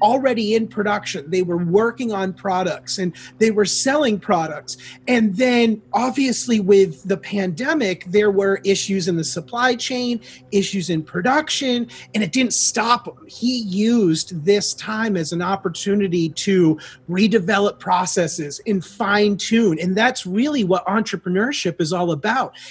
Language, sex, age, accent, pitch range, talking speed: English, male, 30-49, American, 180-235 Hz, 145 wpm